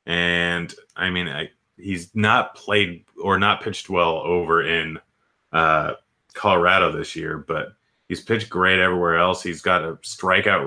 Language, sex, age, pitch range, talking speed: English, male, 30-49, 85-105 Hz, 145 wpm